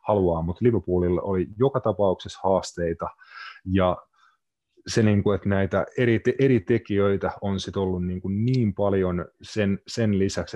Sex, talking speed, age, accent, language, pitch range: male, 110 wpm, 30-49, native, Finnish, 90-105 Hz